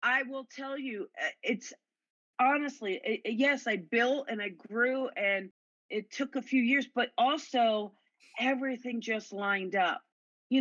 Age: 40-59